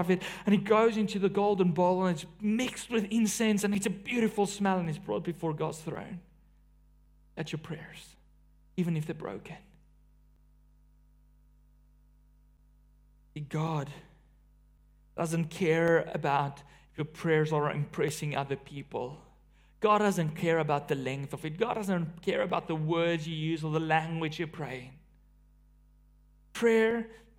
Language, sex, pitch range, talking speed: English, male, 140-195 Hz, 140 wpm